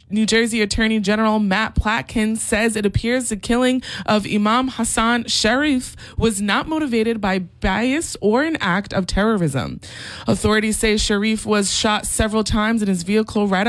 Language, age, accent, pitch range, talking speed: English, 20-39, American, 190-230 Hz, 160 wpm